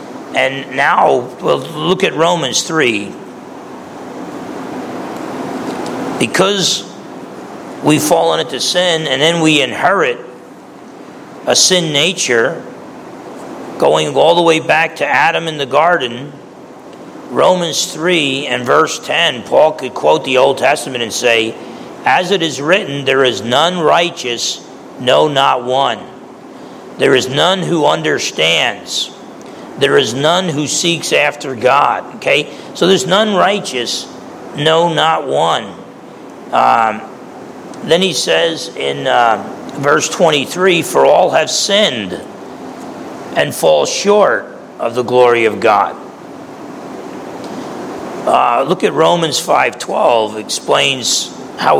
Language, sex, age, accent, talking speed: English, male, 50-69, American, 115 wpm